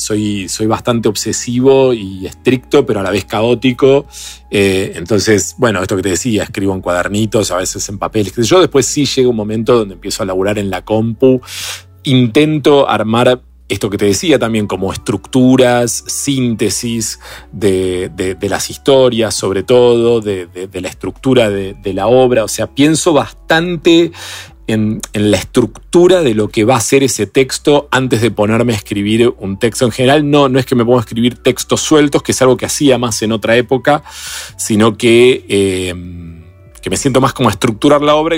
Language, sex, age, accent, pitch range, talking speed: Spanish, male, 40-59, Argentinian, 100-125 Hz, 190 wpm